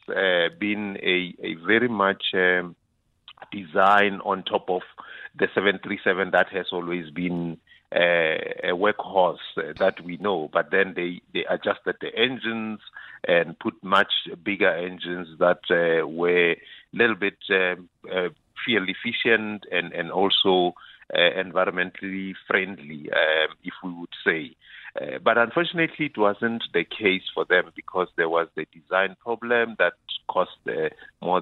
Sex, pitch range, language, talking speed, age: male, 85-110 Hz, English, 145 wpm, 50-69